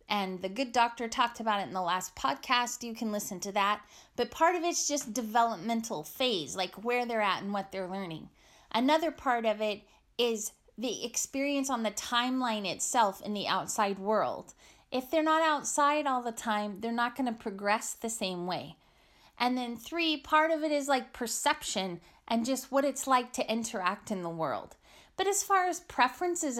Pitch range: 200-270 Hz